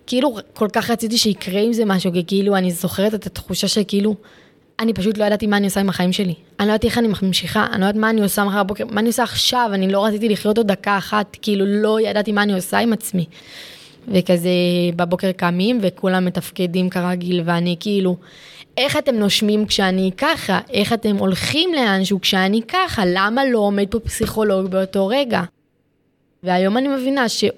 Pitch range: 180-220 Hz